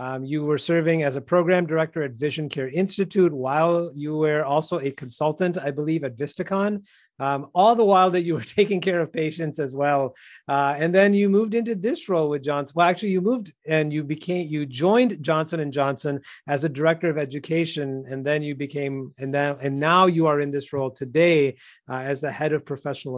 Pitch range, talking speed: 140-170 Hz, 210 wpm